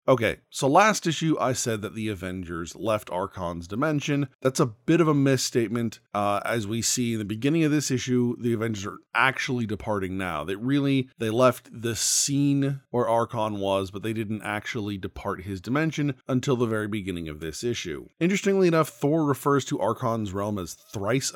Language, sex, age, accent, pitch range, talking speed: English, male, 30-49, American, 105-145 Hz, 185 wpm